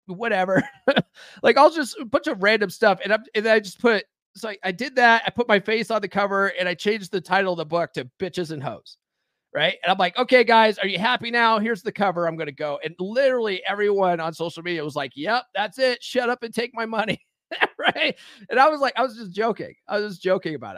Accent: American